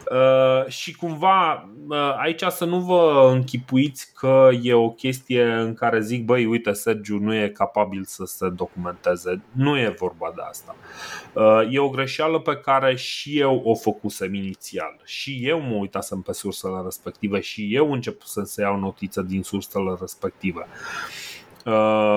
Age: 30-49